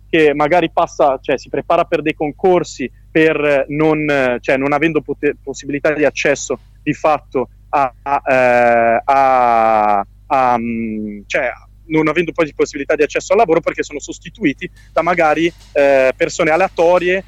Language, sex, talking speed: Italian, male, 95 wpm